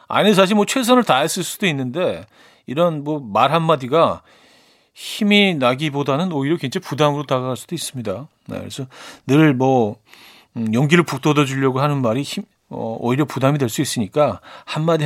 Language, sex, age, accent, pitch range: Korean, male, 40-59, native, 125-165 Hz